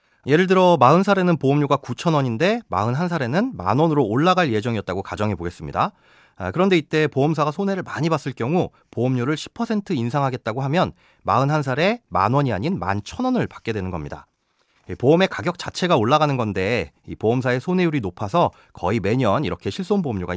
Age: 30-49